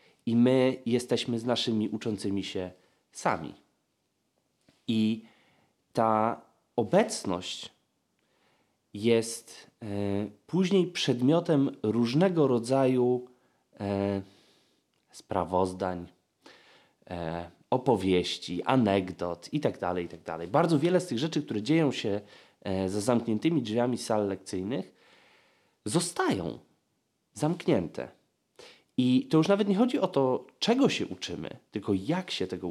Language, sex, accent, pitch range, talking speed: Polish, male, native, 95-130 Hz, 95 wpm